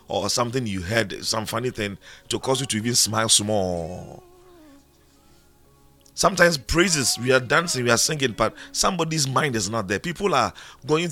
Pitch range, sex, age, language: 100-145 Hz, male, 40-59, English